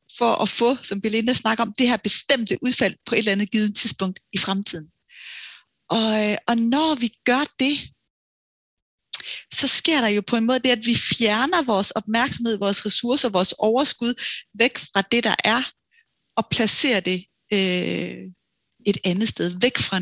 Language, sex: Danish, female